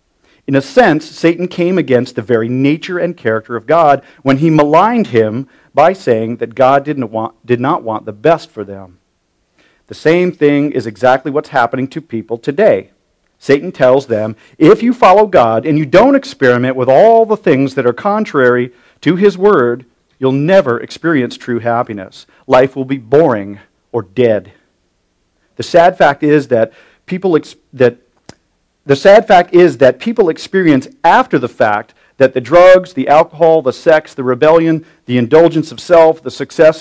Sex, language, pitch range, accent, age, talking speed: male, English, 115-160 Hz, American, 40-59, 170 wpm